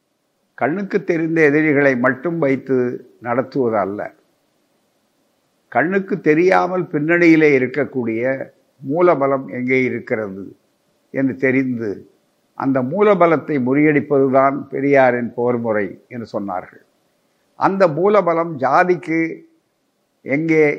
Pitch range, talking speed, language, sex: 130-180 Hz, 80 wpm, Tamil, male